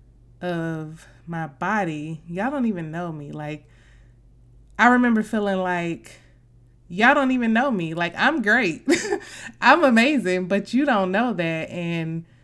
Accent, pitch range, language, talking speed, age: American, 155-210 Hz, English, 140 wpm, 20-39